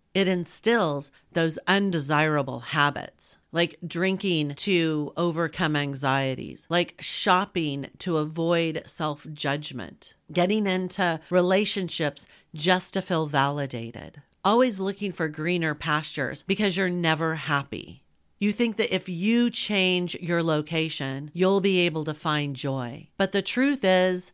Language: English